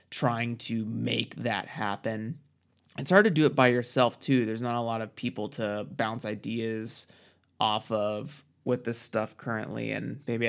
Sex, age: male, 20-39